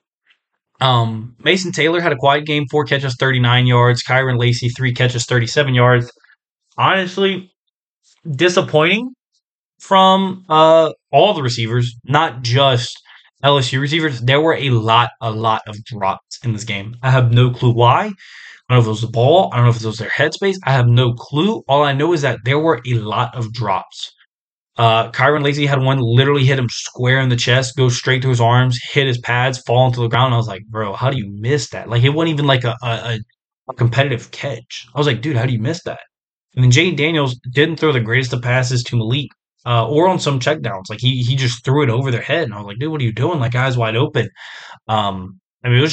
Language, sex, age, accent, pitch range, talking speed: English, male, 20-39, American, 120-150 Hz, 225 wpm